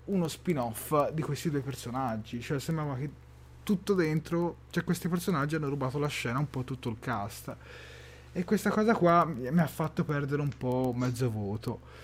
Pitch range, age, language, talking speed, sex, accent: 125-160 Hz, 30-49, Italian, 185 wpm, male, native